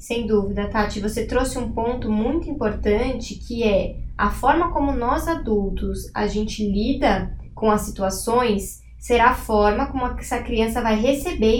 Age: 20-39